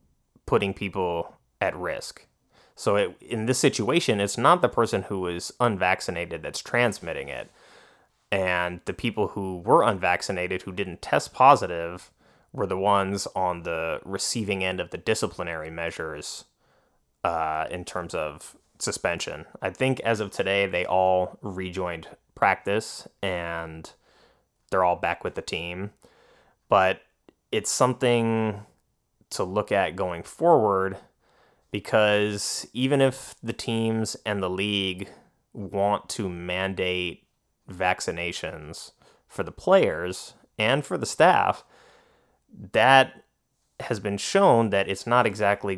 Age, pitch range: 20-39, 90-110 Hz